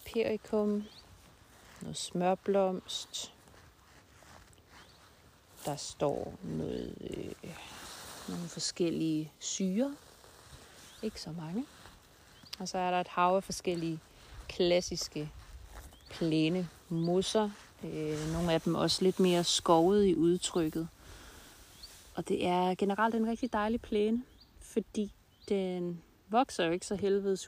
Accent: native